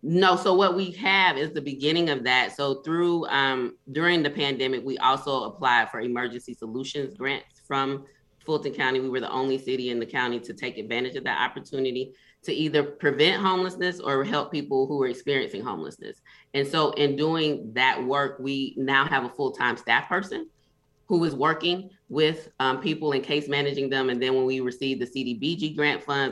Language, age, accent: English, 20-39, American